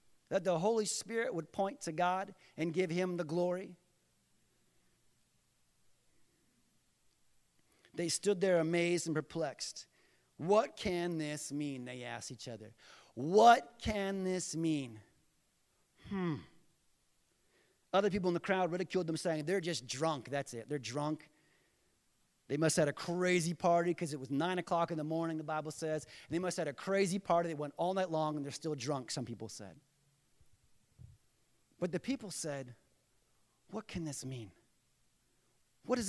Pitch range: 130-180 Hz